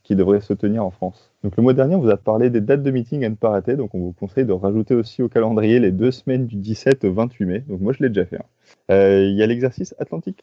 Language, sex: French, male